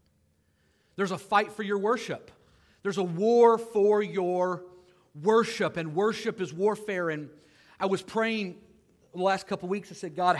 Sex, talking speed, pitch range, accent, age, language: male, 160 wpm, 165-215 Hz, American, 40-59, English